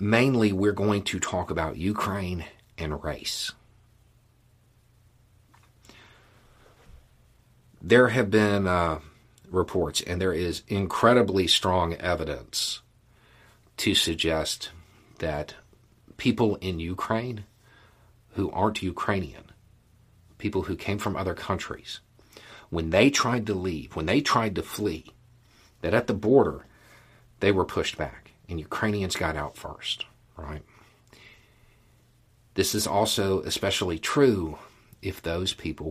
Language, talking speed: English, 110 wpm